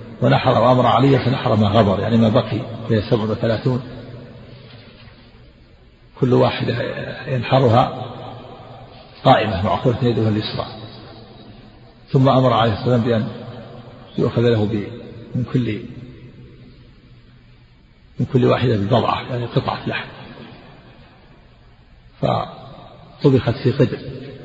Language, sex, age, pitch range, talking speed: Arabic, male, 50-69, 115-130 Hz, 90 wpm